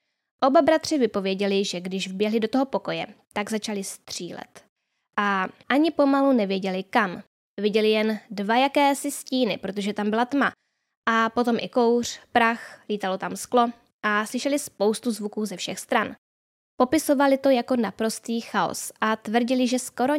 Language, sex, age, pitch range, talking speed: Czech, female, 10-29, 210-255 Hz, 150 wpm